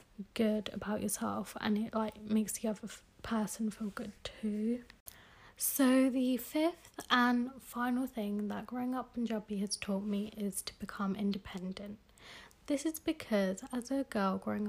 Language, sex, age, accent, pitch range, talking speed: English, female, 30-49, British, 205-235 Hz, 155 wpm